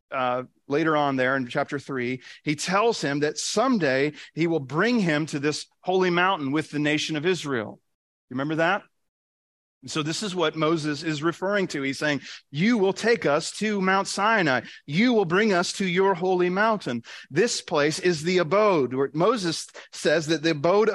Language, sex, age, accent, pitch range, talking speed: English, male, 40-59, American, 130-180 Hz, 185 wpm